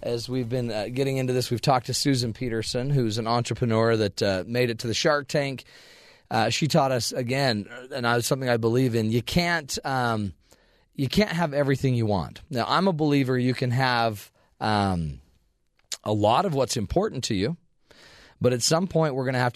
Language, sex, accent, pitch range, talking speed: English, male, American, 105-135 Hz, 195 wpm